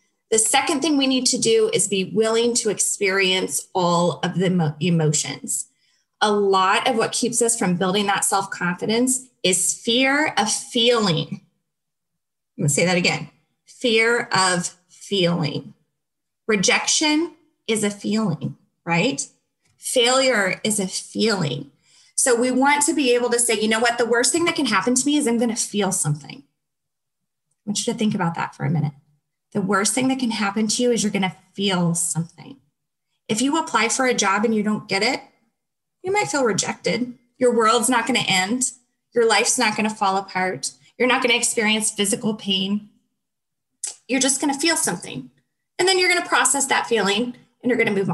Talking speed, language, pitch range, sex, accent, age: 180 wpm, English, 175-245 Hz, female, American, 20-39